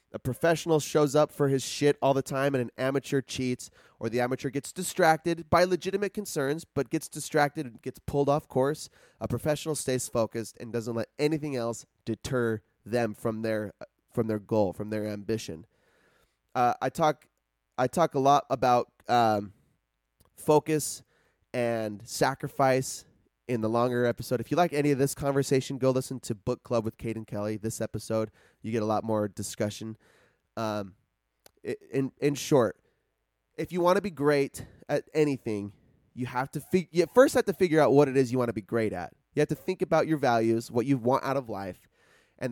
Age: 20-39